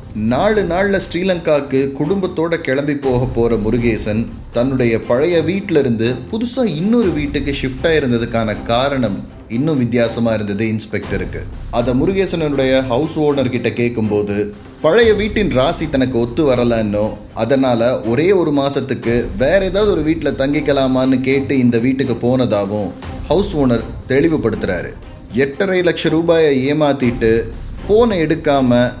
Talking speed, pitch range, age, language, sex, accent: 110 wpm, 115-150 Hz, 30-49, Tamil, male, native